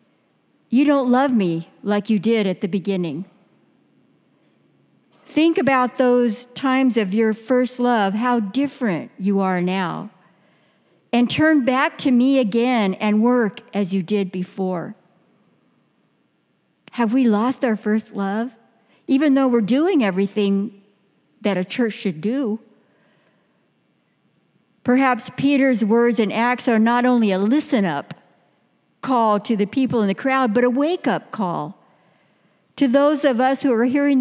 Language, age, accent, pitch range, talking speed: English, 60-79, American, 205-260 Hz, 140 wpm